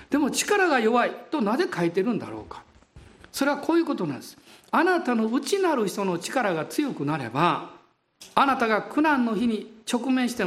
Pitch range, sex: 170-260 Hz, male